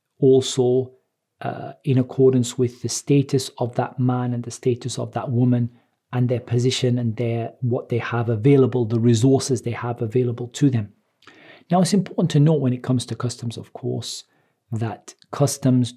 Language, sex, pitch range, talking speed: English, male, 125-145 Hz, 175 wpm